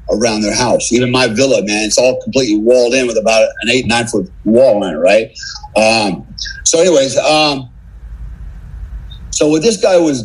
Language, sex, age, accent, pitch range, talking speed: English, male, 50-69, American, 115-140 Hz, 180 wpm